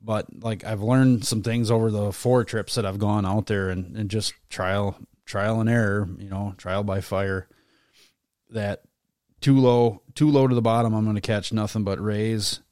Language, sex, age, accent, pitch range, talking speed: English, male, 30-49, American, 95-110 Hz, 200 wpm